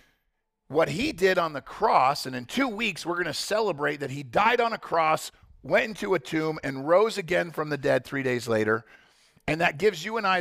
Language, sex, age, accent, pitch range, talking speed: English, male, 50-69, American, 160-220 Hz, 220 wpm